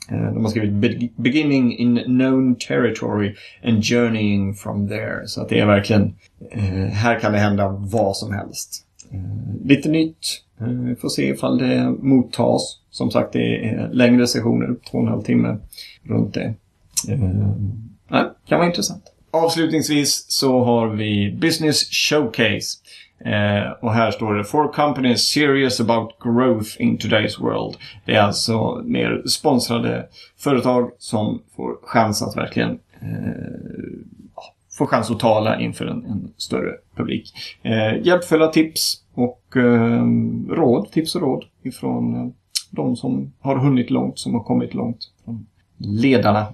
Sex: male